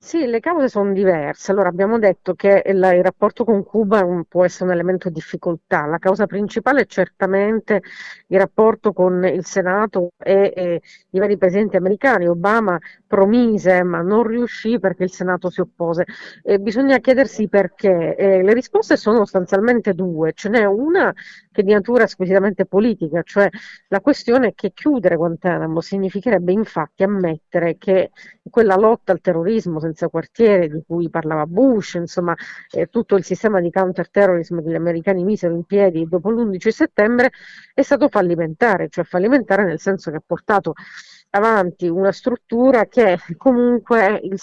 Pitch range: 180-220 Hz